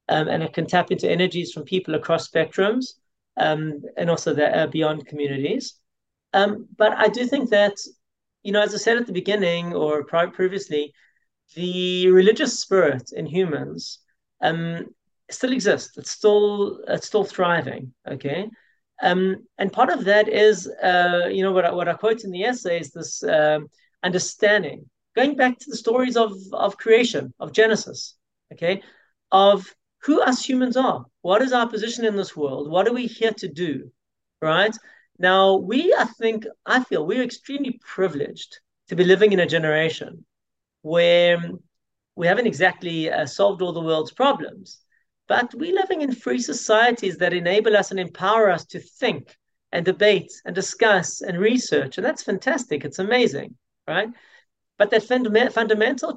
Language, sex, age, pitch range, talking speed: English, male, 30-49, 170-225 Hz, 165 wpm